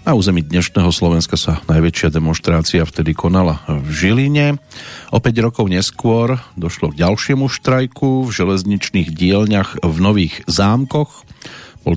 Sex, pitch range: male, 90-115 Hz